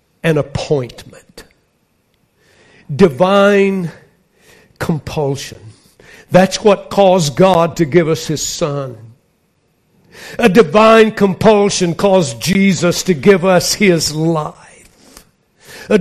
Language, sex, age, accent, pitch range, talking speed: English, male, 60-79, American, 160-205 Hz, 90 wpm